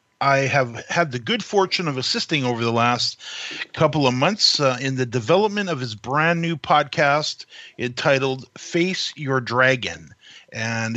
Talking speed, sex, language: 155 wpm, male, English